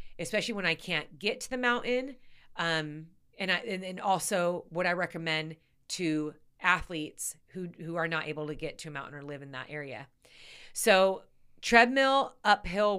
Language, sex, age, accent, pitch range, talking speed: English, female, 30-49, American, 160-195 Hz, 165 wpm